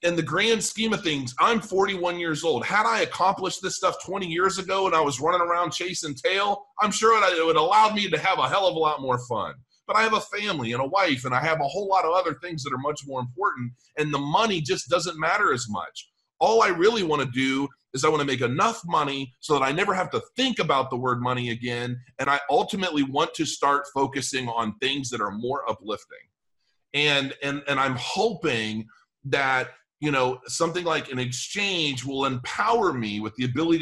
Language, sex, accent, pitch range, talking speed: English, male, American, 125-170 Hz, 225 wpm